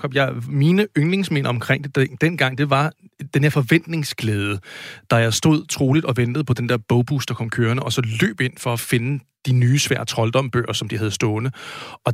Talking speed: 195 wpm